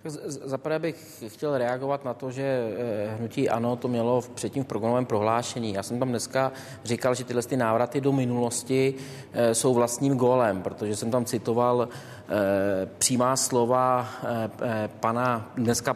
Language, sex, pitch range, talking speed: Czech, male, 120-135 Hz, 145 wpm